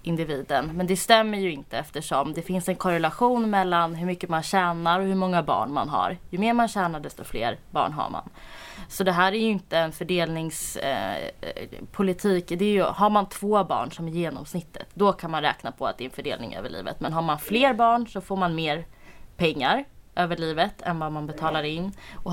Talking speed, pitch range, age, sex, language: 210 wpm, 160-195 Hz, 20-39, female, Swedish